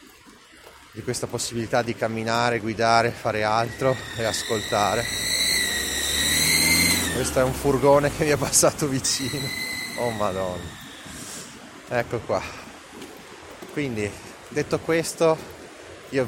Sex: male